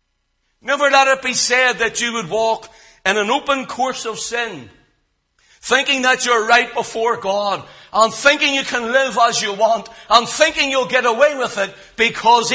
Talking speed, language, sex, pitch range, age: 175 wpm, English, male, 175-275 Hz, 60-79